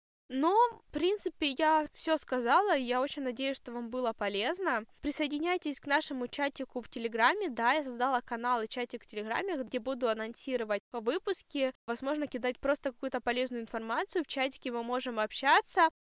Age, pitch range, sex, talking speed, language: 10-29, 235-280 Hz, female, 160 wpm, Russian